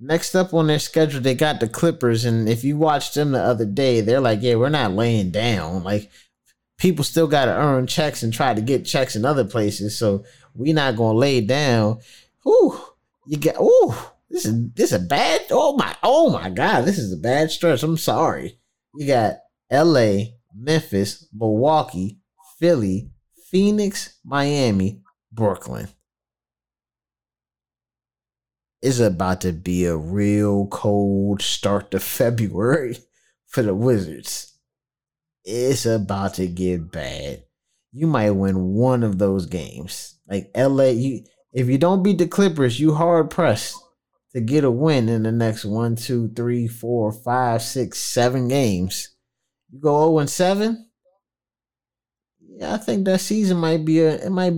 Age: 30-49